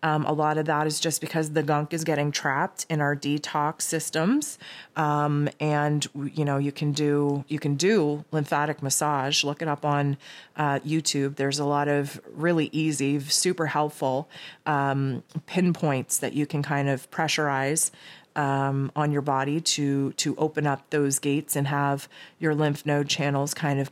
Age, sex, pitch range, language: 30-49, female, 145-165 Hz, English